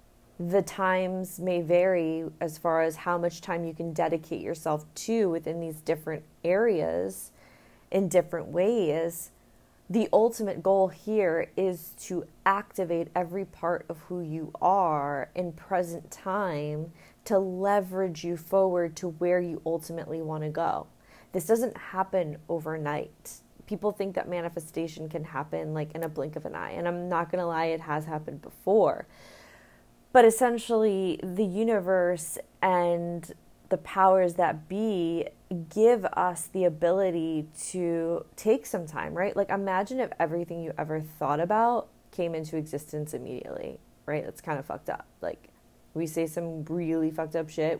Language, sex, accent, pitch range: English, female, American, 160-190 Hz